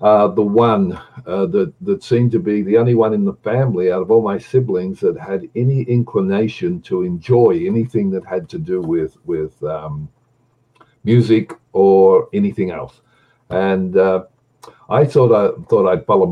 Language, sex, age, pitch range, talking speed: English, male, 60-79, 95-150 Hz, 170 wpm